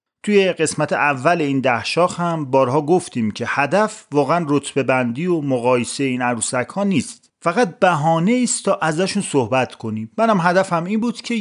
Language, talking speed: English, 175 wpm